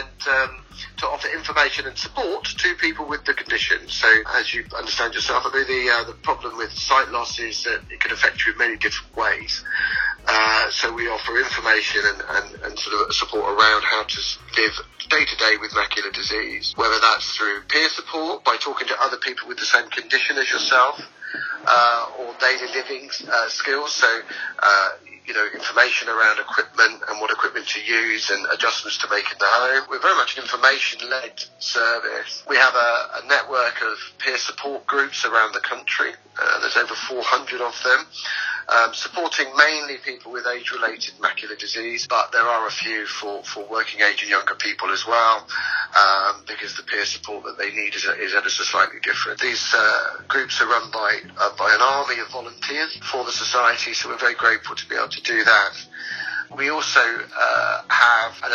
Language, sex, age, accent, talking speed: English, male, 40-59, British, 190 wpm